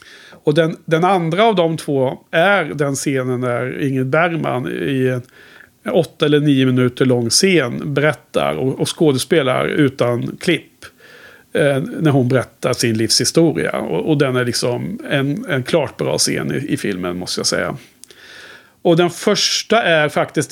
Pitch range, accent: 130-170 Hz, Norwegian